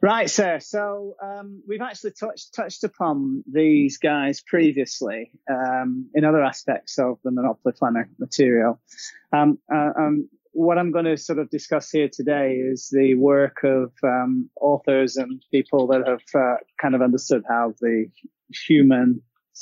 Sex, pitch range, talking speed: male, 130-155 Hz, 155 wpm